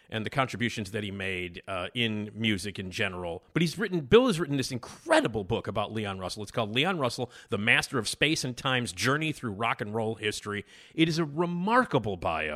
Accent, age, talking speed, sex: American, 40-59, 210 wpm, male